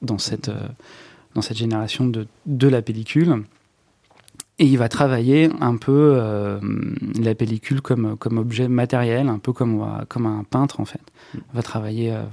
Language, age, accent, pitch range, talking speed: French, 30-49, French, 110-130 Hz, 170 wpm